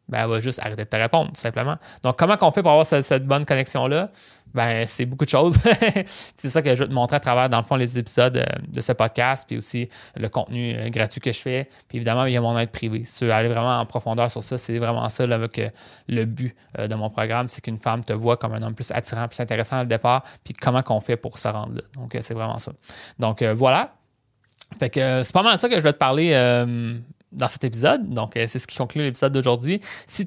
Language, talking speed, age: French, 260 wpm, 20-39